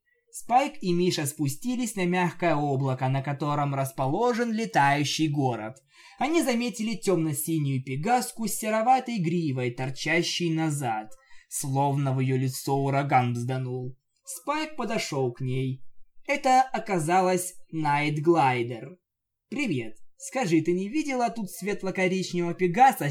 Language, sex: Russian, male